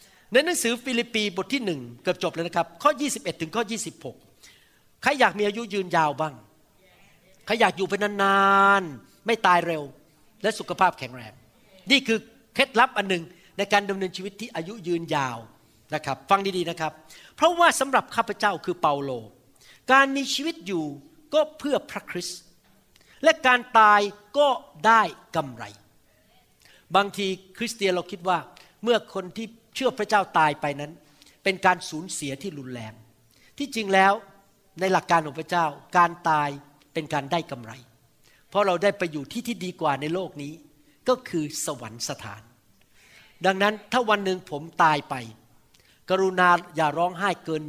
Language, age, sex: Thai, 60-79, male